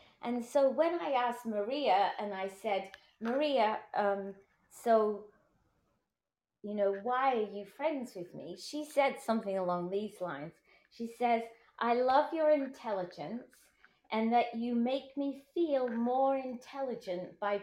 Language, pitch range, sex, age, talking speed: English, 200-255 Hz, female, 30-49, 140 wpm